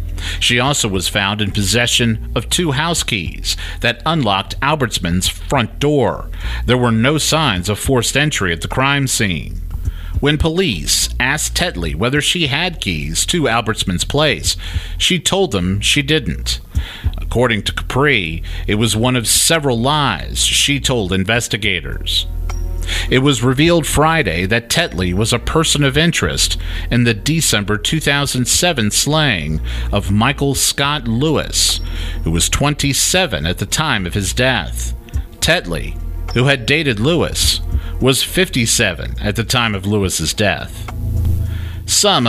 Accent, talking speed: American, 140 wpm